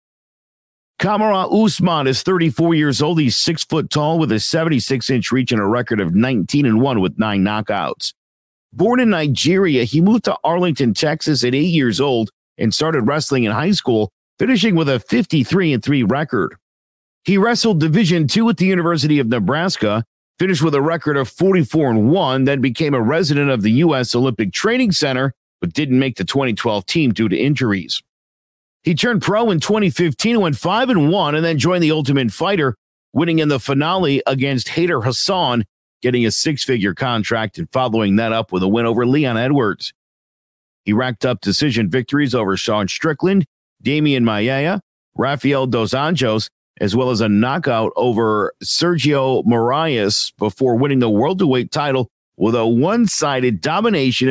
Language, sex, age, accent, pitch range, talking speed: English, male, 50-69, American, 115-165 Hz, 170 wpm